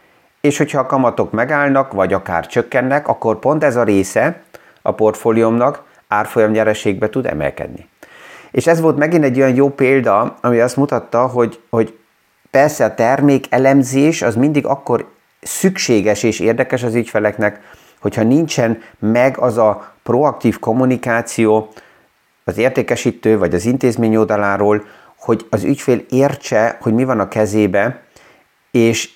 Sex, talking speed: male, 135 wpm